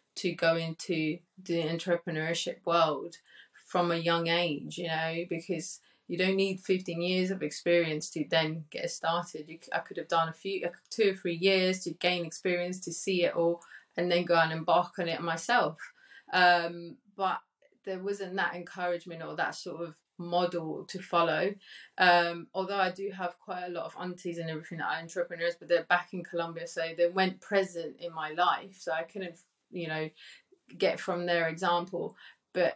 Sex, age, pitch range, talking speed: female, 20-39, 170-195 Hz, 180 wpm